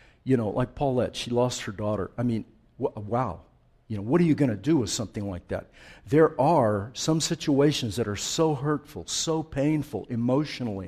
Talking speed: 195 wpm